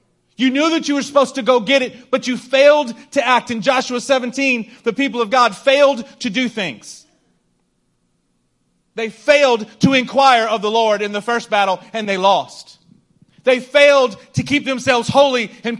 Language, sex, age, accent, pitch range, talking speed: English, male, 30-49, American, 175-250 Hz, 180 wpm